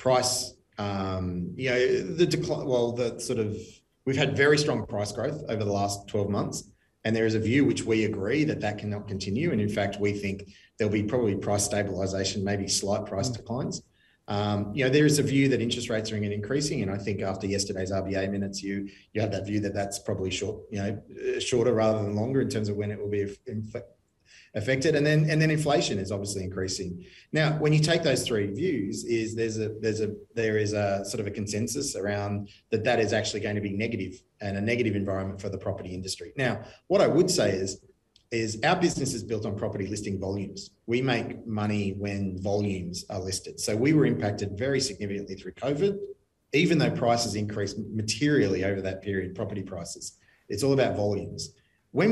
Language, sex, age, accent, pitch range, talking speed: English, male, 30-49, Australian, 100-120 Hz, 205 wpm